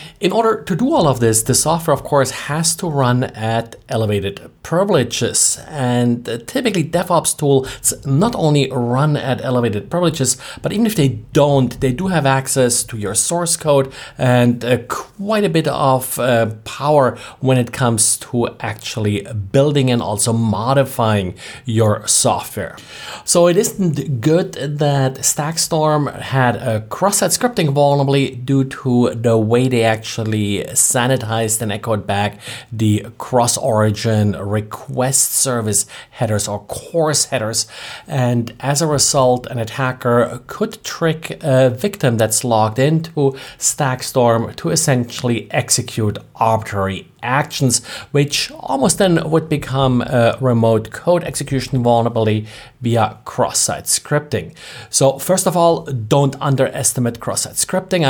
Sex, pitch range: male, 115-145 Hz